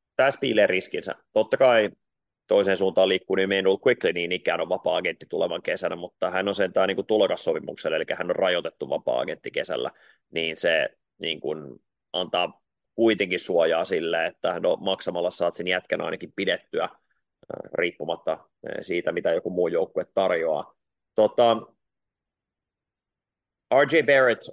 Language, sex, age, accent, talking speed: Finnish, male, 30-49, native, 135 wpm